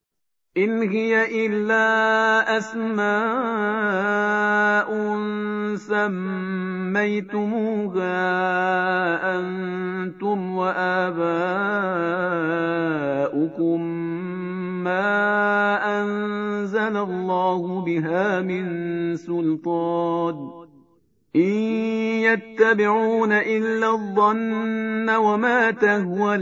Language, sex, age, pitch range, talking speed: Persian, male, 50-69, 180-210 Hz, 45 wpm